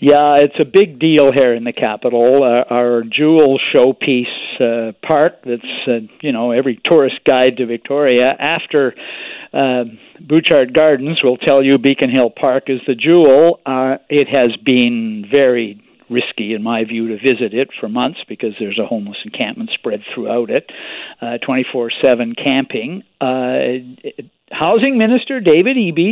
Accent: American